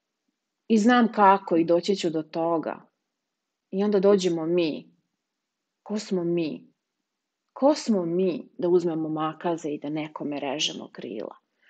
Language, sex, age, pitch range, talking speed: English, female, 30-49, 165-205 Hz, 135 wpm